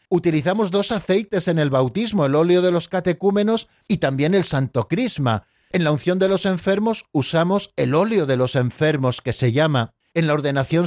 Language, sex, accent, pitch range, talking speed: Spanish, male, Spanish, 135-190 Hz, 190 wpm